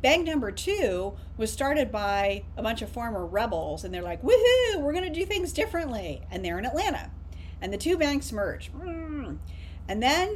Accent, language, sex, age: American, English, female, 40-59